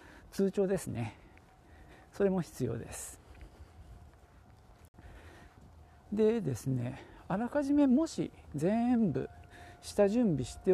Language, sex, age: Japanese, male, 50-69